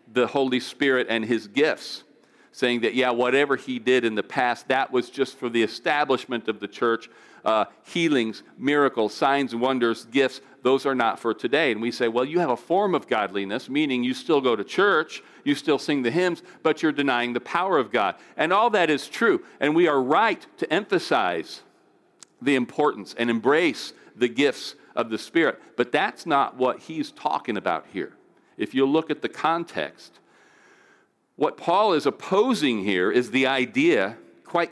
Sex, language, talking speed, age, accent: male, English, 185 wpm, 50-69, American